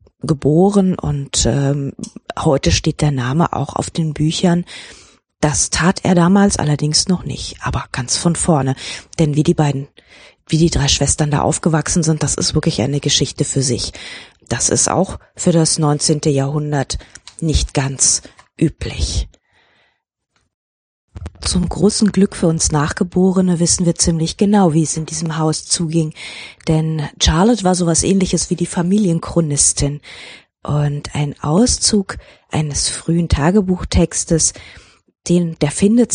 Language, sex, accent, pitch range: German, female, German, 145-185 Hz